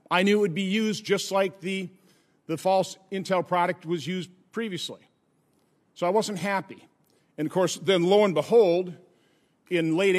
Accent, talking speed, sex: American, 170 wpm, male